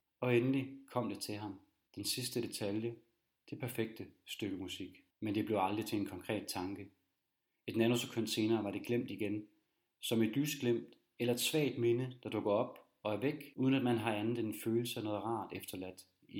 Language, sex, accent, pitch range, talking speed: Danish, male, native, 100-120 Hz, 195 wpm